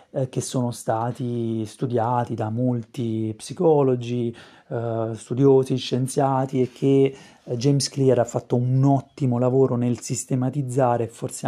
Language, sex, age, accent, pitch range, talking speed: Italian, male, 30-49, native, 120-140 Hz, 120 wpm